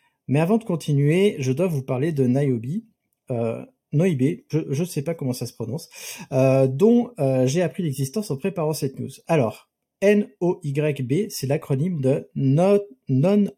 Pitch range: 130-175 Hz